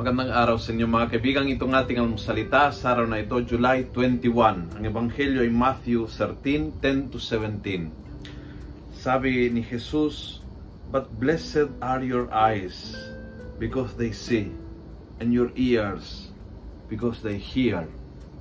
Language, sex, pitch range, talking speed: Filipino, male, 105-145 Hz, 125 wpm